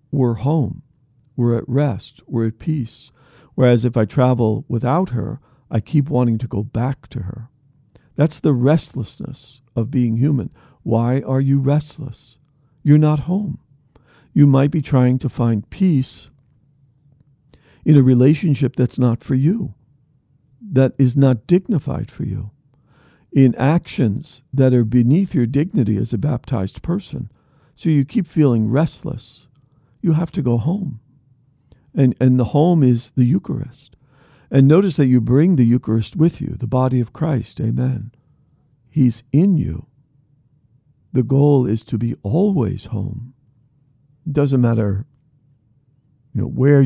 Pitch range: 125-145 Hz